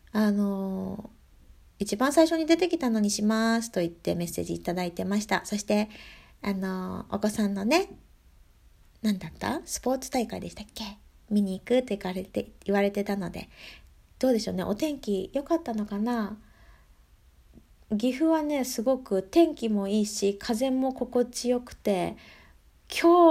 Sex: female